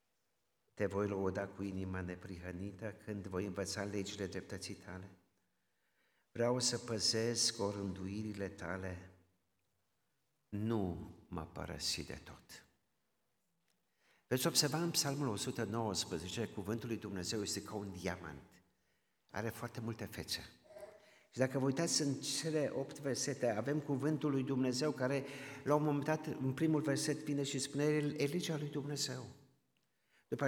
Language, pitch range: Romanian, 95-135 Hz